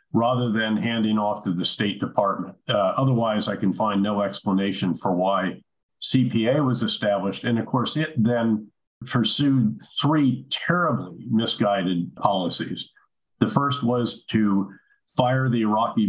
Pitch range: 100-125 Hz